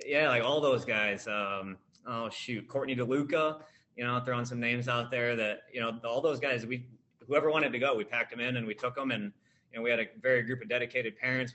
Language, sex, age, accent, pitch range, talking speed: English, male, 30-49, American, 110-125 Hz, 245 wpm